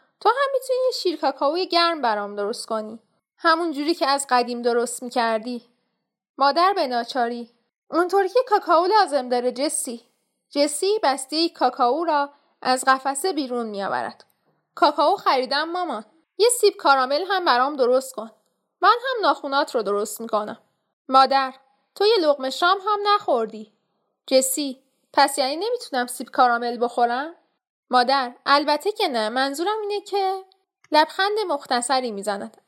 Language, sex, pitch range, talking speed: Persian, female, 245-340 Hz, 135 wpm